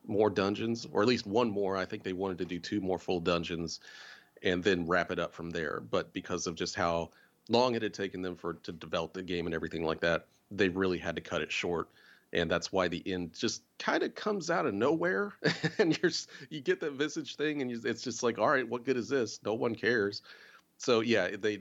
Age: 40-59